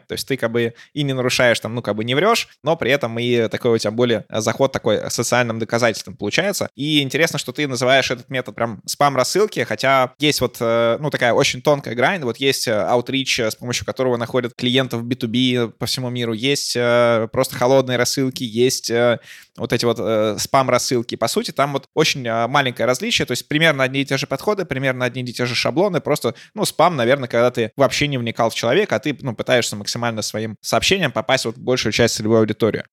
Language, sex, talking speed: Russian, male, 200 wpm